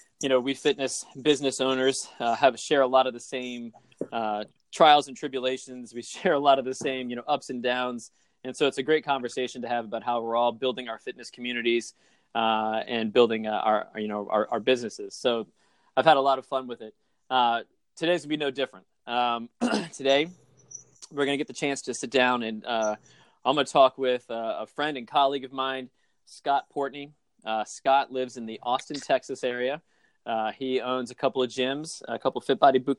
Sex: male